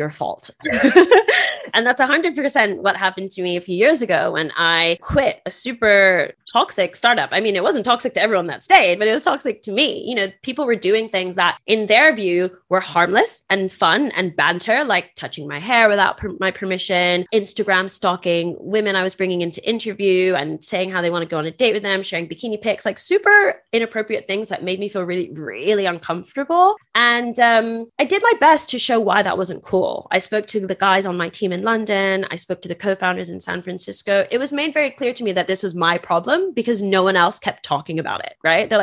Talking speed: 225 wpm